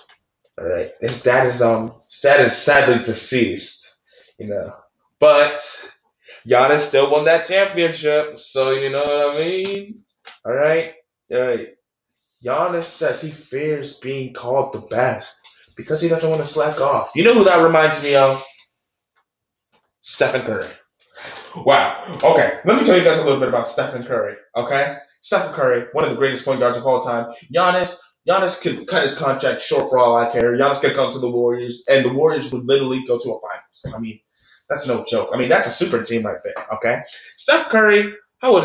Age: 20-39